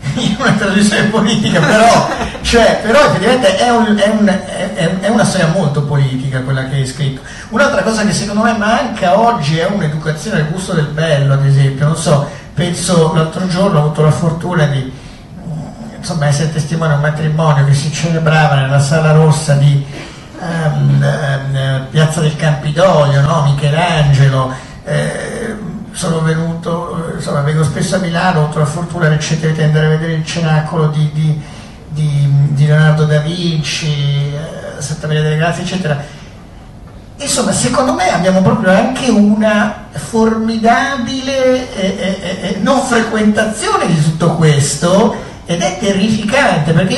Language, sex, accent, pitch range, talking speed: Italian, male, native, 150-200 Hz, 145 wpm